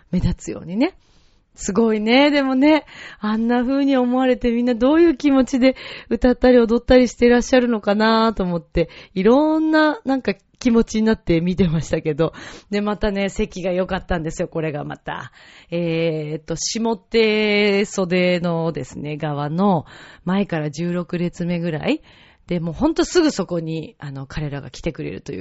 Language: Japanese